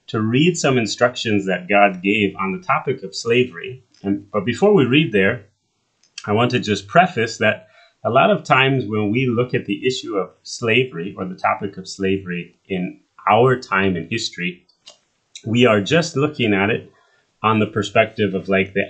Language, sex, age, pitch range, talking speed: English, male, 30-49, 95-115 Hz, 180 wpm